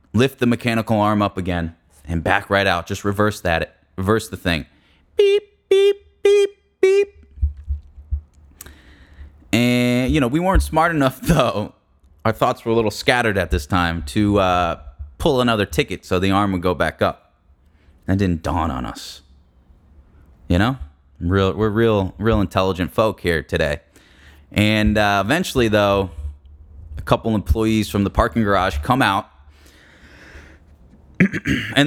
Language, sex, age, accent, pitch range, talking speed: English, male, 20-39, American, 80-125 Hz, 145 wpm